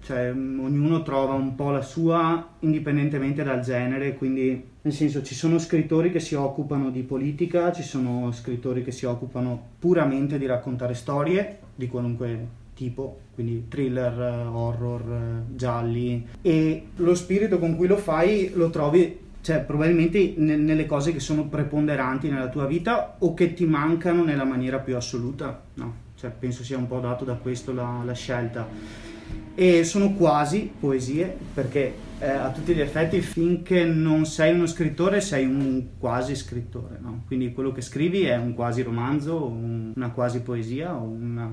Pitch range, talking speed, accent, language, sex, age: 125-160 Hz, 160 wpm, native, Italian, male, 20-39